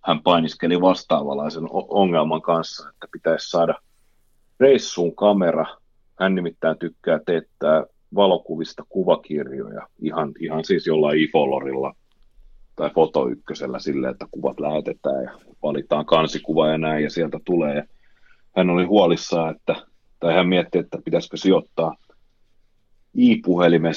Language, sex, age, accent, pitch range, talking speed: Finnish, male, 30-49, native, 80-105 Hz, 115 wpm